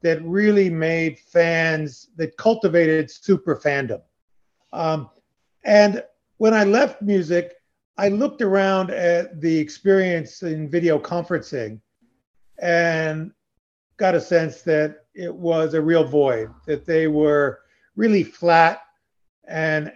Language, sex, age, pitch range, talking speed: English, male, 50-69, 150-185 Hz, 115 wpm